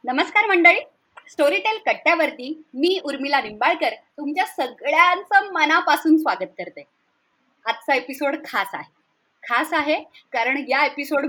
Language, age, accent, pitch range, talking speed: Marathi, 30-49, native, 240-305 Hz, 95 wpm